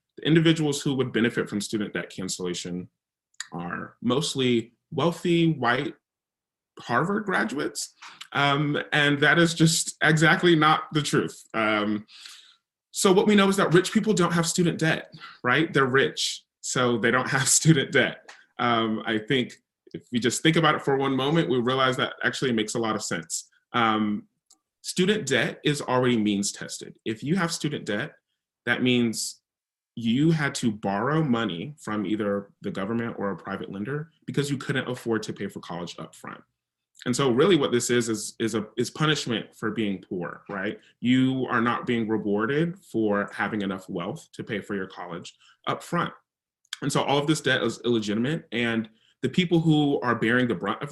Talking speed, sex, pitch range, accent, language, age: 180 wpm, male, 110-155 Hz, American, English, 30-49